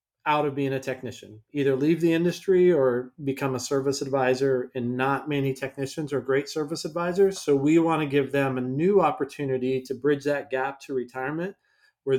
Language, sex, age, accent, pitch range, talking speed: English, male, 40-59, American, 130-160 Hz, 180 wpm